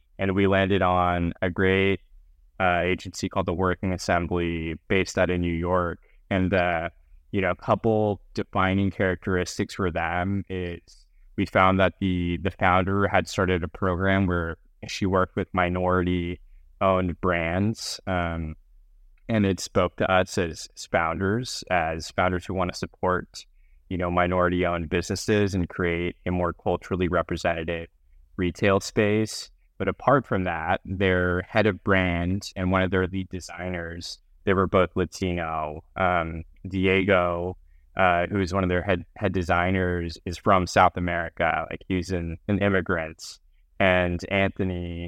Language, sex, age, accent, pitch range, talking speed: English, male, 20-39, American, 85-95 Hz, 145 wpm